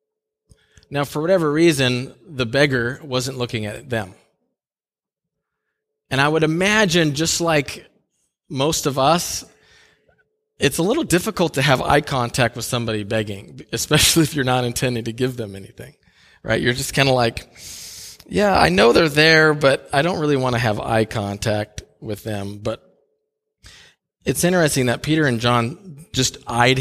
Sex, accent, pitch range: male, American, 120-175 Hz